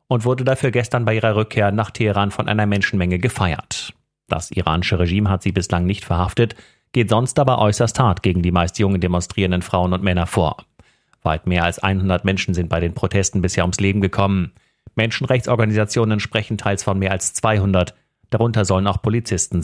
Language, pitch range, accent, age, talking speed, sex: German, 90-110 Hz, German, 40-59, 180 wpm, male